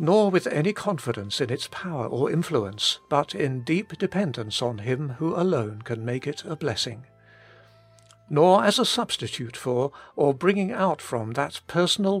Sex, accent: male, British